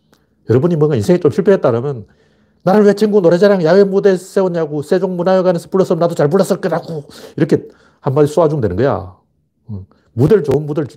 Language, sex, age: Korean, male, 40-59